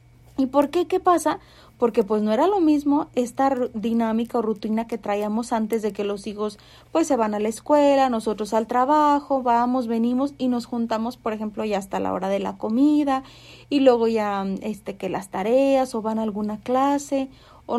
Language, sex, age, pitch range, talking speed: Spanish, female, 30-49, 215-275 Hz, 195 wpm